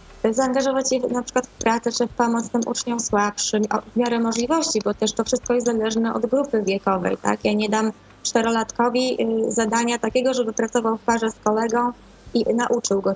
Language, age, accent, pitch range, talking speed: Polish, 20-39, native, 225-255 Hz, 180 wpm